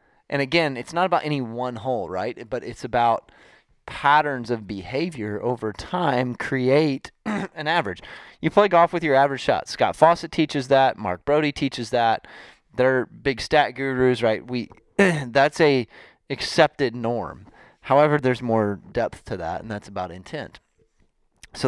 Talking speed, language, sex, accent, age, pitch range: 155 wpm, English, male, American, 30-49, 100-135 Hz